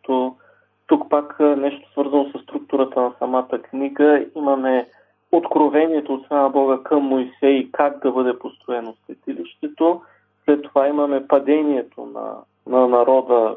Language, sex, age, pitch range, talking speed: Bulgarian, male, 40-59, 130-150 Hz, 125 wpm